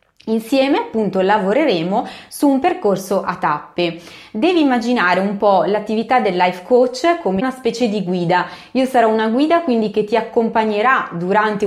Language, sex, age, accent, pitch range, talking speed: Italian, female, 20-39, native, 195-255 Hz, 155 wpm